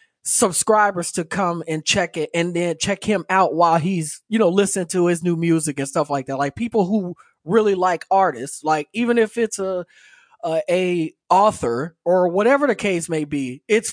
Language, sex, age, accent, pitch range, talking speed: English, male, 20-39, American, 170-205 Hz, 195 wpm